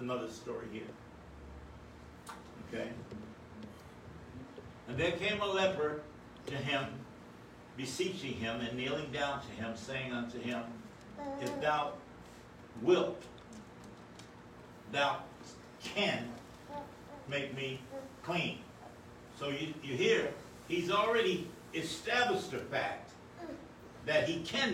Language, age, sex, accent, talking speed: English, 60-79, male, American, 100 wpm